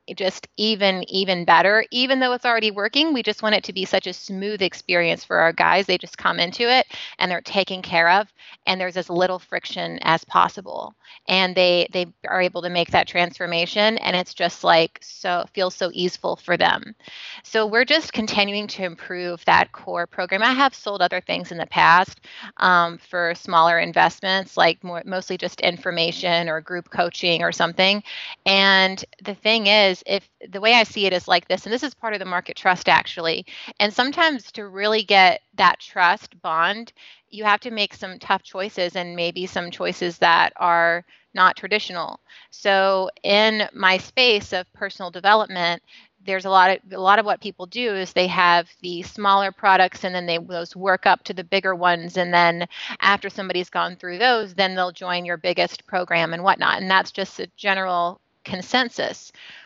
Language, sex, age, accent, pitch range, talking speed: English, female, 30-49, American, 175-205 Hz, 190 wpm